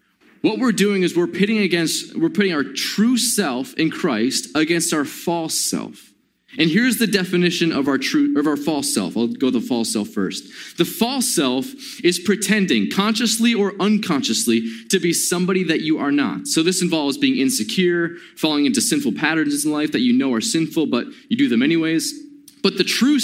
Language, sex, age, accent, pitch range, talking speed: English, male, 20-39, American, 165-250 Hz, 190 wpm